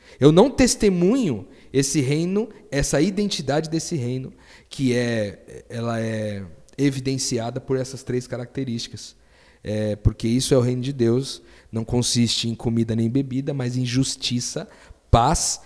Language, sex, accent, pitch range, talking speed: Portuguese, male, Brazilian, 115-145 Hz, 130 wpm